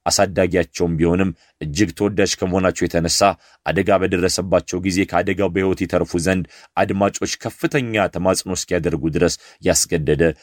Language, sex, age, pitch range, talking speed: Amharic, male, 30-49, 85-105 Hz, 110 wpm